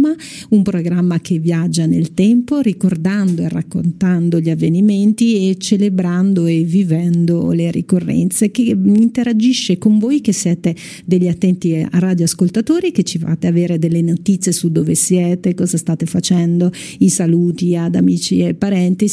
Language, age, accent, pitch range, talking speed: Italian, 50-69, native, 165-195 Hz, 140 wpm